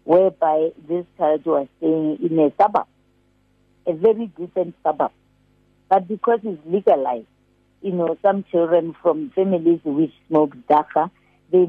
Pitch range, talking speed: 165-210 Hz, 135 wpm